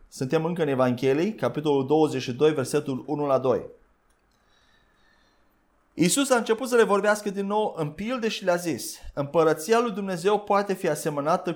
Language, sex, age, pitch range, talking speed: Romanian, male, 30-49, 150-205 Hz, 150 wpm